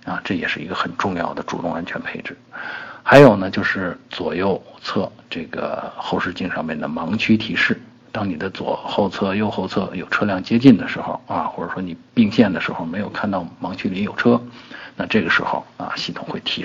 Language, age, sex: Chinese, 50-69, male